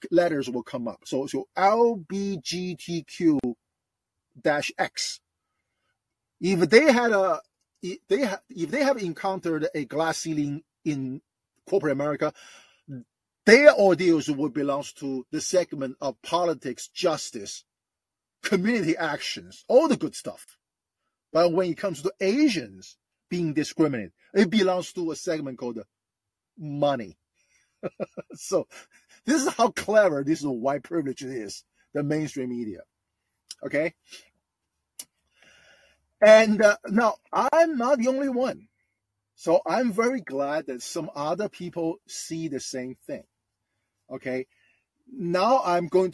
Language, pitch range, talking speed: English, 135-200 Hz, 125 wpm